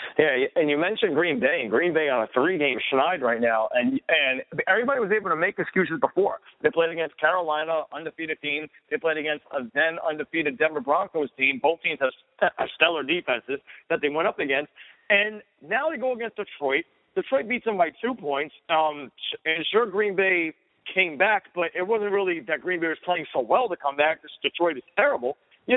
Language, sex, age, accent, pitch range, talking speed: English, male, 50-69, American, 165-230 Hz, 200 wpm